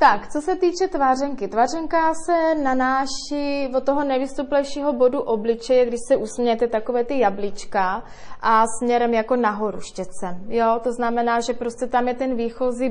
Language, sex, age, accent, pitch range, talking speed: Czech, female, 20-39, native, 215-245 Hz, 155 wpm